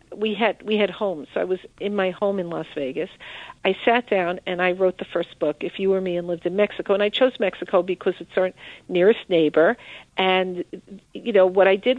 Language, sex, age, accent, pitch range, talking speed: English, female, 50-69, American, 185-230 Hz, 225 wpm